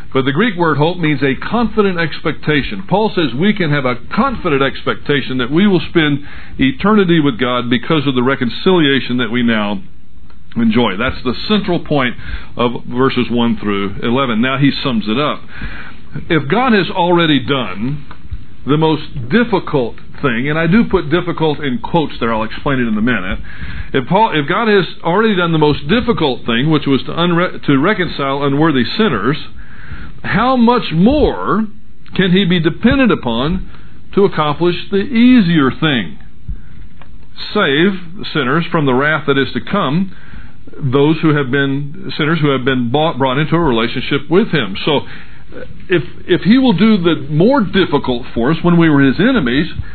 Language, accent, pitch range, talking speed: English, American, 135-190 Hz, 170 wpm